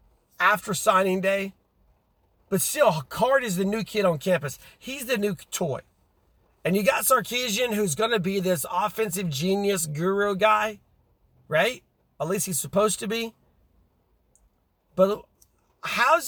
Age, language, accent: 40-59, English, American